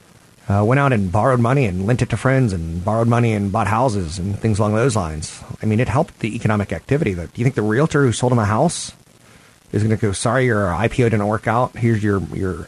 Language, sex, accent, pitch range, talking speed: English, male, American, 95-120 Hz, 245 wpm